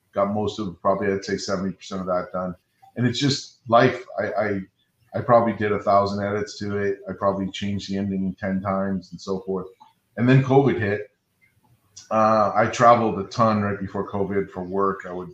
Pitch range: 95-105 Hz